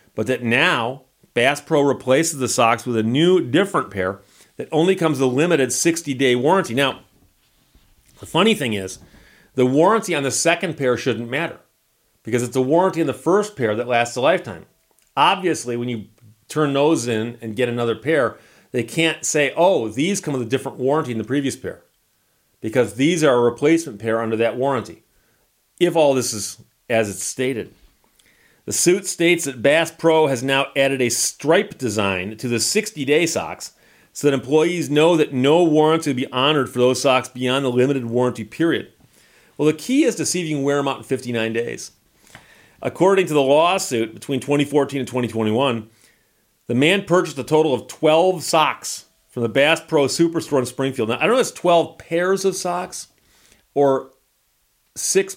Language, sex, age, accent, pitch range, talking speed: English, male, 40-59, American, 120-160 Hz, 185 wpm